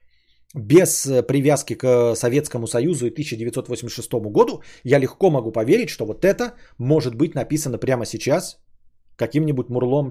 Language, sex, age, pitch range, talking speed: Bulgarian, male, 20-39, 130-175 Hz, 130 wpm